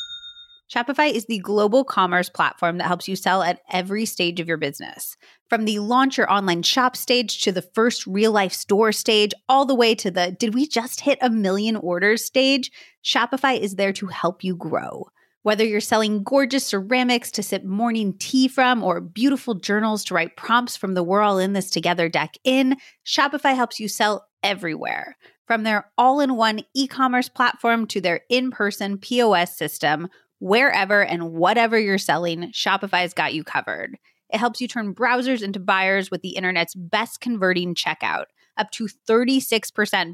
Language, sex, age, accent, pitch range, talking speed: English, female, 30-49, American, 180-235 Hz, 170 wpm